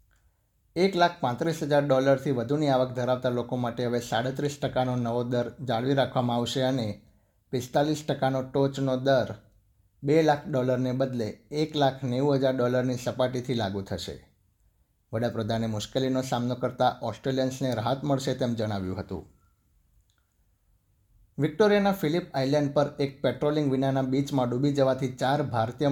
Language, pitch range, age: Gujarati, 110-135 Hz, 60-79